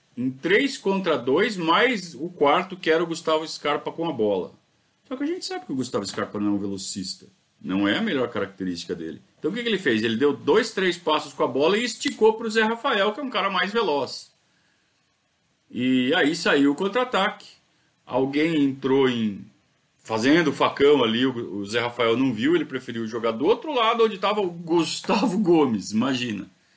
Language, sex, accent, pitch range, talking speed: Portuguese, male, Brazilian, 140-235 Hz, 195 wpm